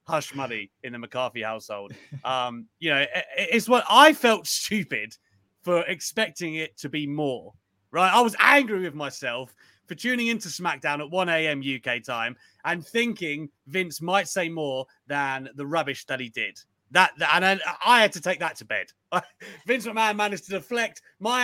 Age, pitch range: 30-49, 125-185 Hz